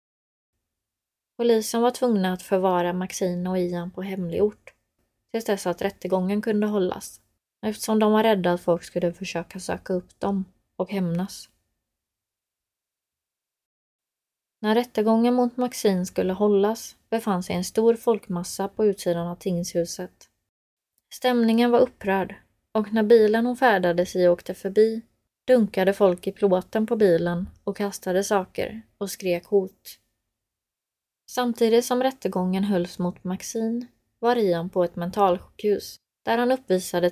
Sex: female